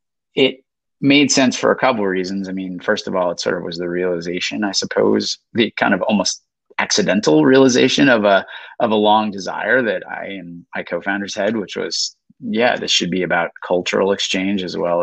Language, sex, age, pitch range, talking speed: English, male, 30-49, 95-125 Hz, 200 wpm